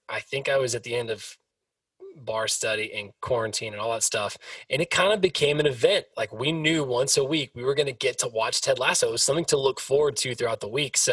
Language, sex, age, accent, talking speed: English, male, 20-39, American, 265 wpm